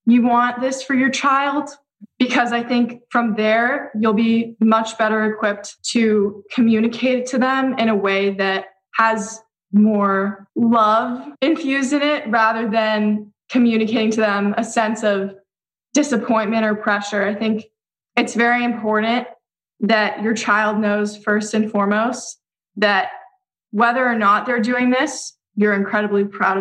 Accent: American